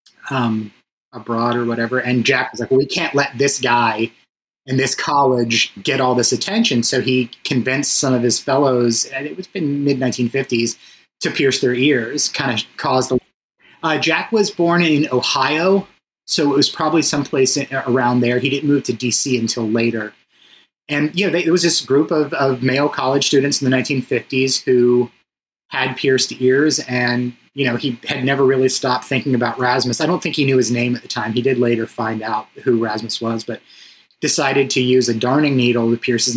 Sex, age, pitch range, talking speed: male, 30-49, 120-140 Hz, 195 wpm